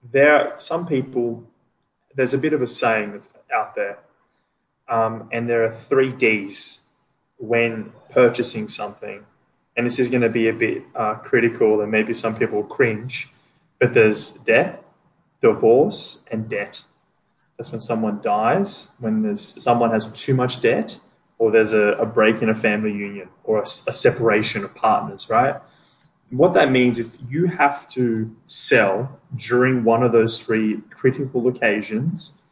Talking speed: 160 wpm